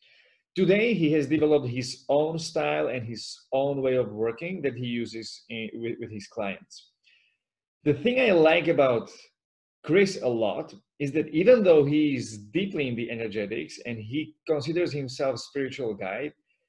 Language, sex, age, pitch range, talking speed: English, male, 30-49, 125-155 Hz, 160 wpm